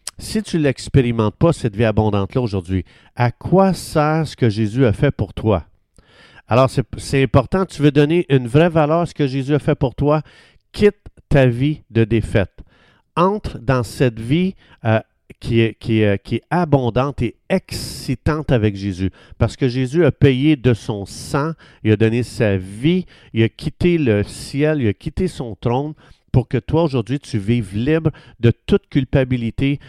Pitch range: 115-165 Hz